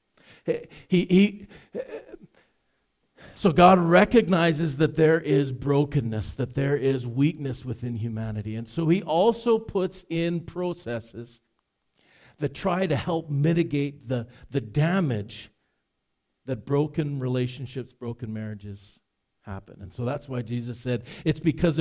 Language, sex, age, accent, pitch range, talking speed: English, male, 50-69, American, 130-170 Hz, 125 wpm